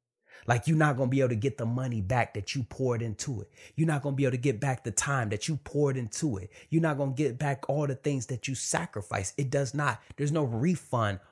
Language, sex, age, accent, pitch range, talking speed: English, male, 30-49, American, 110-140 Hz, 270 wpm